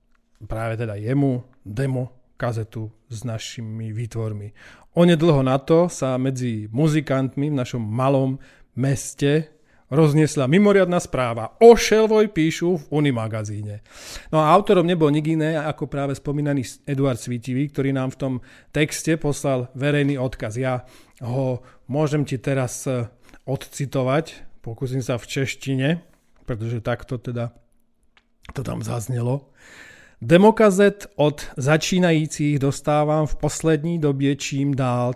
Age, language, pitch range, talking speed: 40-59, Slovak, 125-155 Hz, 120 wpm